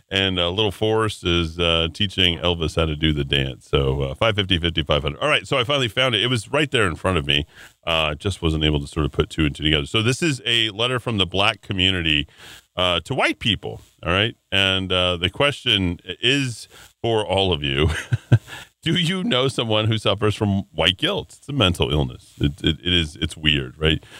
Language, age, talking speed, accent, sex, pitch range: English, 40-59, 220 wpm, American, male, 80-125 Hz